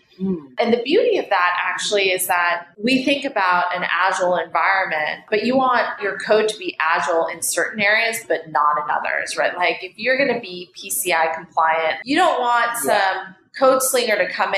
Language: English